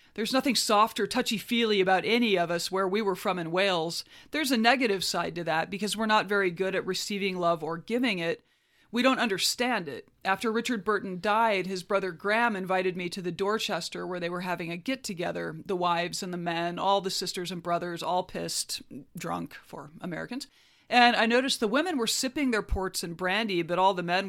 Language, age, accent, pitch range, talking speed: English, 40-59, American, 175-220 Hz, 210 wpm